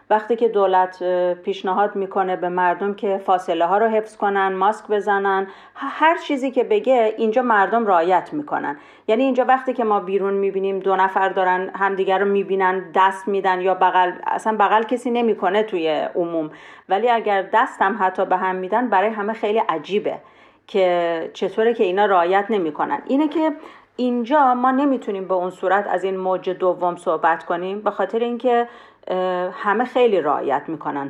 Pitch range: 190-240 Hz